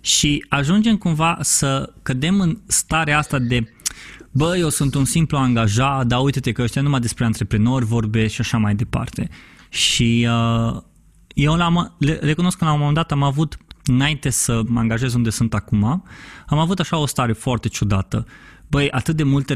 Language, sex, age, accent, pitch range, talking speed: Romanian, male, 20-39, native, 120-160 Hz, 180 wpm